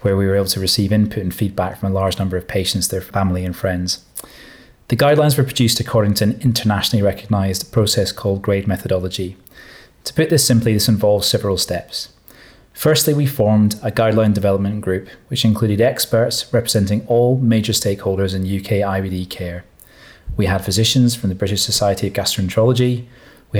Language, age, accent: English, 30-49, British